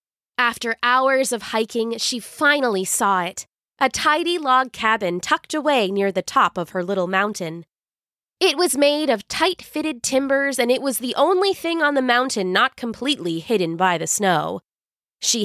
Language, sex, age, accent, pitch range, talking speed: English, female, 20-39, American, 195-275 Hz, 165 wpm